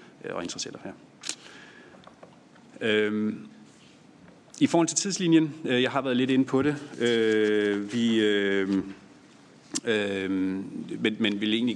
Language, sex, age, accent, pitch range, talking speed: Danish, male, 30-49, native, 95-110 Hz, 120 wpm